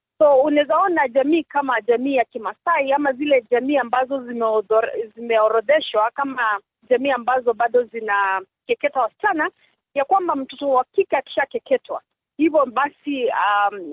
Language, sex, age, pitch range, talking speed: Swahili, female, 40-59, 235-300 Hz, 120 wpm